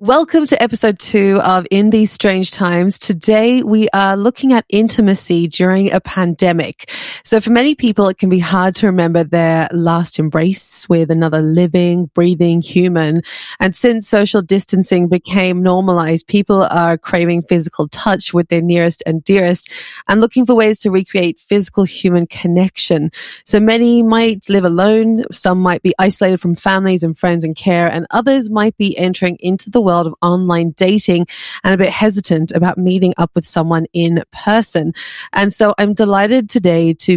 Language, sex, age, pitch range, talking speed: English, female, 20-39, 175-205 Hz, 170 wpm